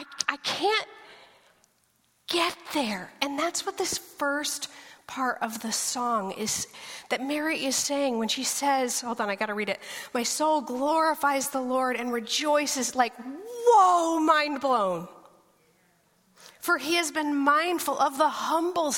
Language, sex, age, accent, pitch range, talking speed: English, female, 40-59, American, 245-315 Hz, 145 wpm